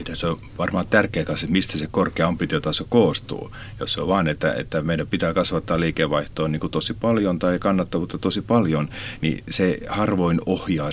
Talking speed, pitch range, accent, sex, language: 165 wpm, 80-105 Hz, native, male, Finnish